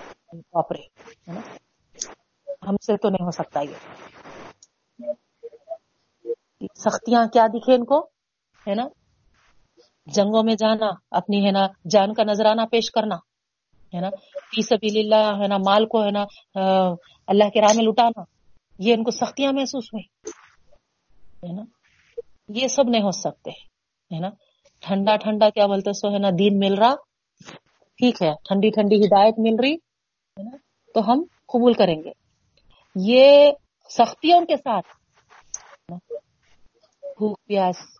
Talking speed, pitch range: 125 wpm, 175-230 Hz